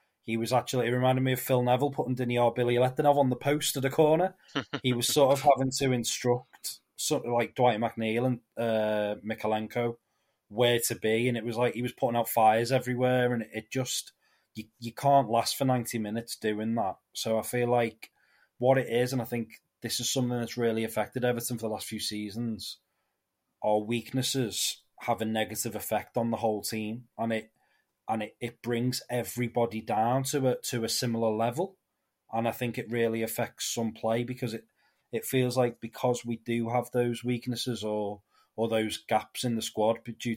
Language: English